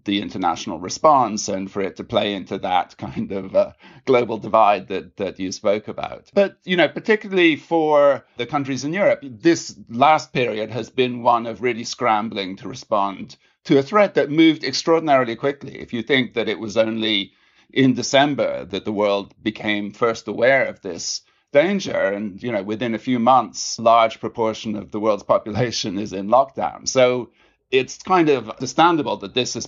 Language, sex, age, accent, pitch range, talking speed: English, male, 50-69, British, 110-140 Hz, 180 wpm